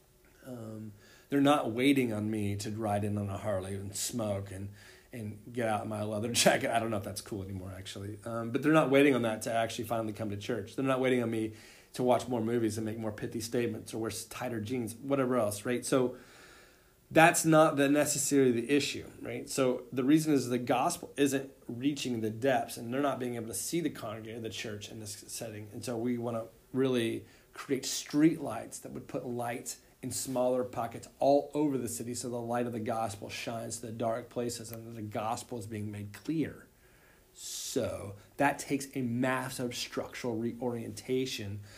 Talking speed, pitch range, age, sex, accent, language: 200 wpm, 110-130 Hz, 30-49, male, American, English